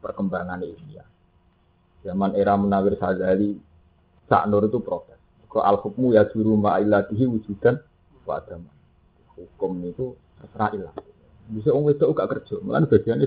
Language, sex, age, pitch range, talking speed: Indonesian, male, 30-49, 90-145 Hz, 135 wpm